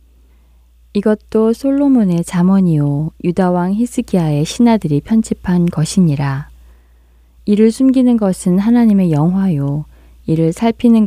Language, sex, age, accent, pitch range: Korean, female, 20-39, native, 140-190 Hz